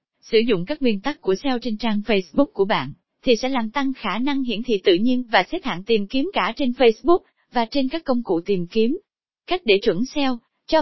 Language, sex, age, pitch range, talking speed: Vietnamese, female, 20-39, 205-280 Hz, 235 wpm